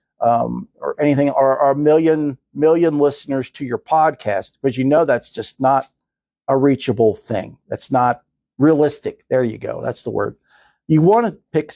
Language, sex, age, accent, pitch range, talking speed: English, male, 50-69, American, 125-160 Hz, 175 wpm